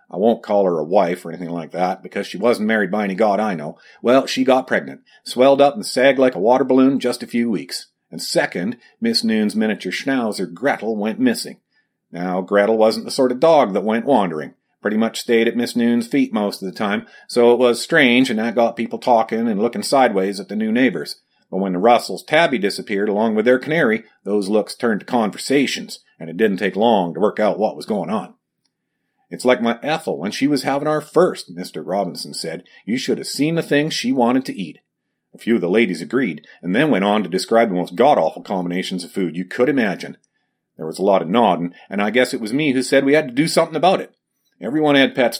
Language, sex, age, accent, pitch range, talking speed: English, male, 50-69, American, 100-135 Hz, 235 wpm